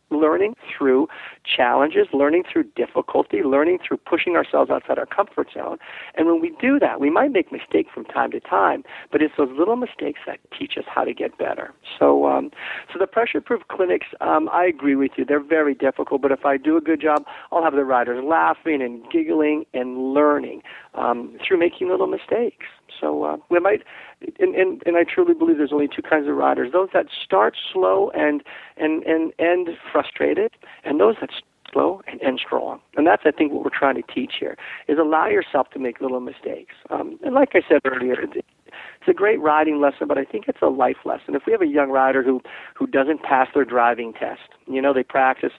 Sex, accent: male, American